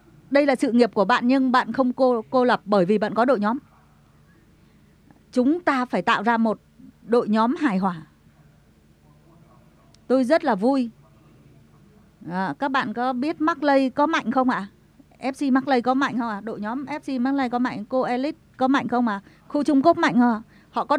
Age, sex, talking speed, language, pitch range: 20-39, female, 210 wpm, Vietnamese, 180-265 Hz